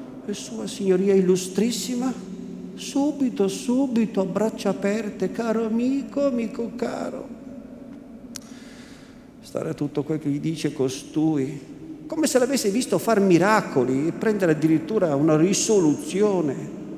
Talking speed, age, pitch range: 115 wpm, 50-69, 145-225 Hz